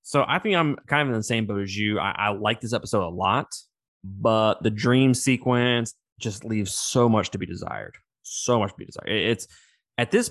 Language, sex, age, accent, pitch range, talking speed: English, male, 20-39, American, 100-125 Hz, 220 wpm